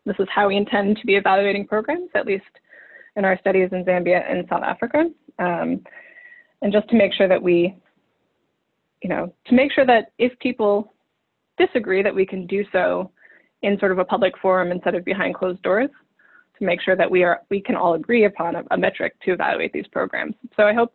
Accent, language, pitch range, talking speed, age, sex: American, English, 190-245 Hz, 210 wpm, 20-39, female